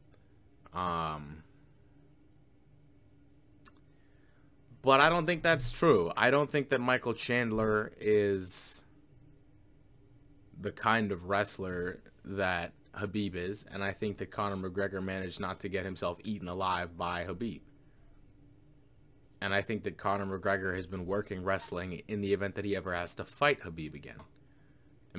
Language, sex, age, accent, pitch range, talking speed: English, male, 20-39, American, 90-115 Hz, 140 wpm